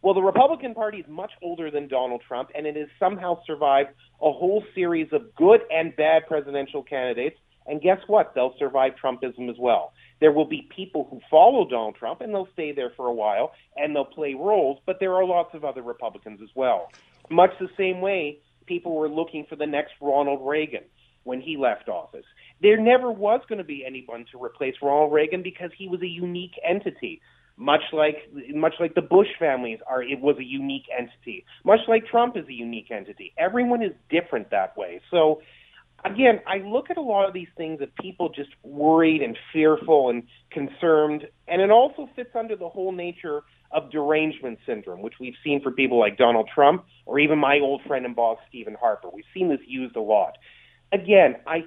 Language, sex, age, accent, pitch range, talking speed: English, male, 30-49, American, 140-195 Hz, 200 wpm